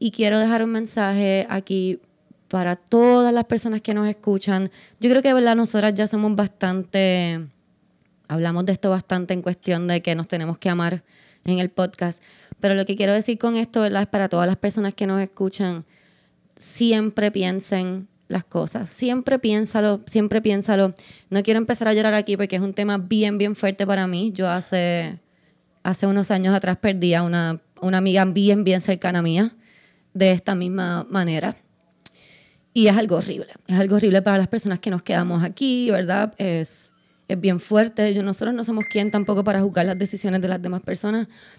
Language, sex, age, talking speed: Spanish, female, 20-39, 185 wpm